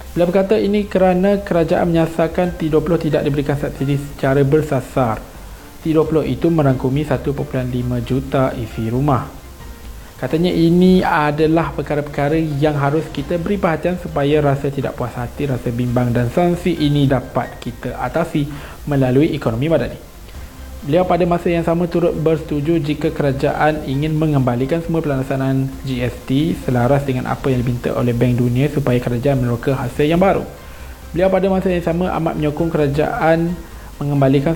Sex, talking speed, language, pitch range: male, 140 wpm, Malay, 125-165 Hz